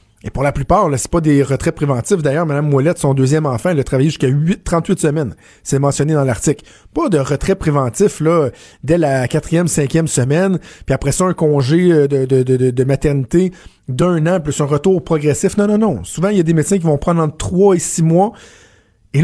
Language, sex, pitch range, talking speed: French, male, 140-185 Hz, 225 wpm